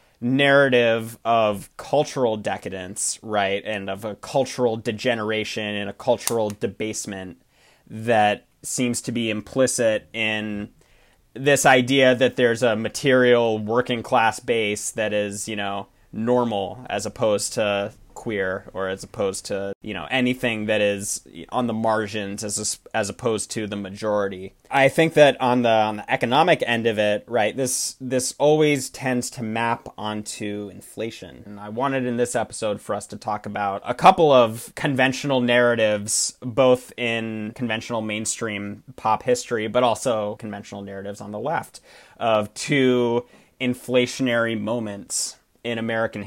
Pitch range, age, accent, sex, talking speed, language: 105-125 Hz, 20-39, American, male, 145 wpm, English